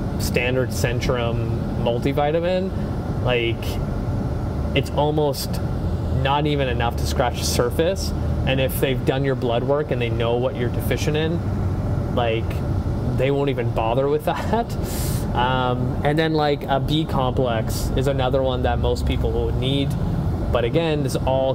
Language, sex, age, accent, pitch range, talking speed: English, male, 20-39, American, 115-130 Hz, 150 wpm